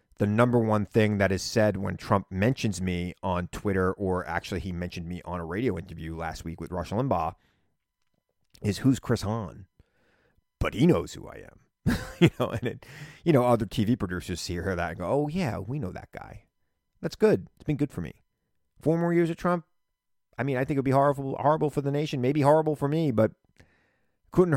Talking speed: 210 wpm